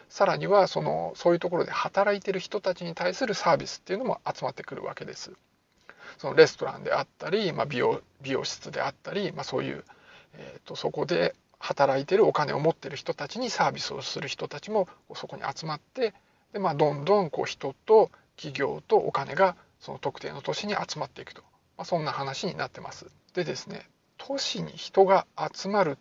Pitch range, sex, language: 160-220 Hz, male, Japanese